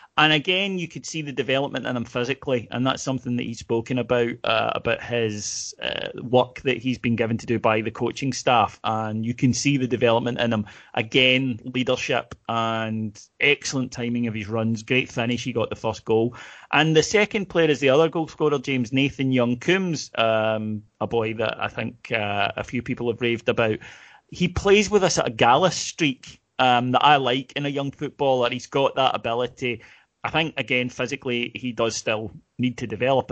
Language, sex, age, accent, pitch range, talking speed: English, male, 30-49, British, 115-140 Hz, 195 wpm